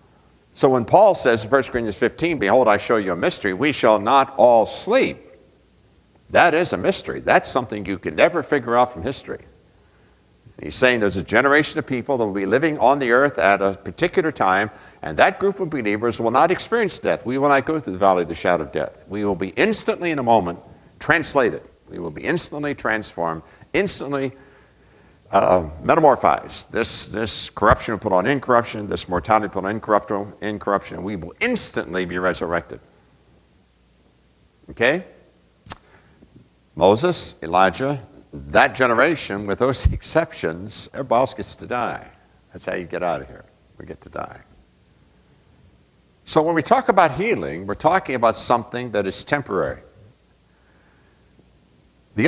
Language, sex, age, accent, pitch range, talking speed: English, male, 60-79, American, 100-135 Hz, 165 wpm